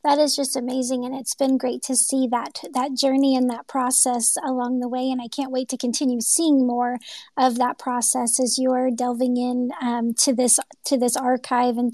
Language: English